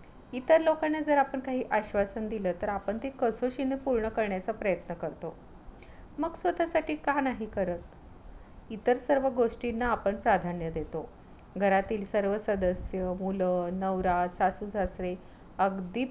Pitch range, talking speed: 190-255 Hz, 125 wpm